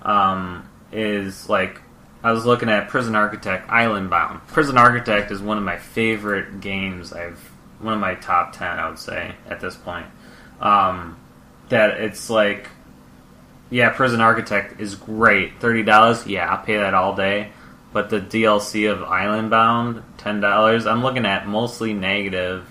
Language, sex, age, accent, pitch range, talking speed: English, male, 20-39, American, 95-110 Hz, 155 wpm